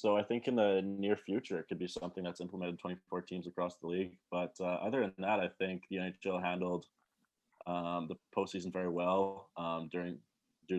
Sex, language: male, English